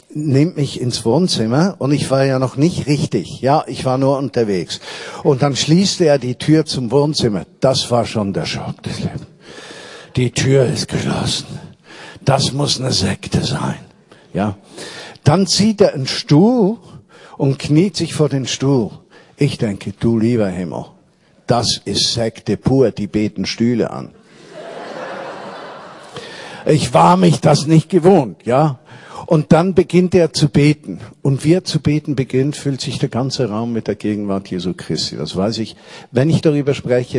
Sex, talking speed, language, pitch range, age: male, 165 wpm, German, 120-160 Hz, 50-69